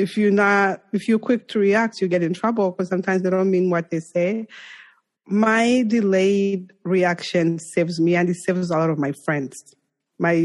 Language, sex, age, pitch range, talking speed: English, female, 20-39, 170-220 Hz, 195 wpm